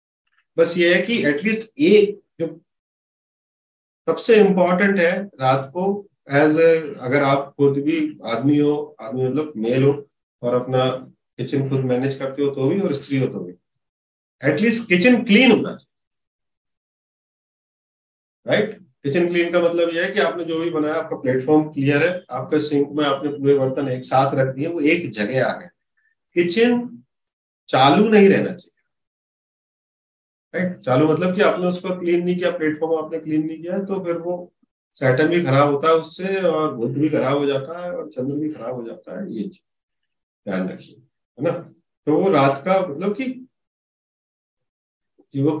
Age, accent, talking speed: 40-59, native, 145 wpm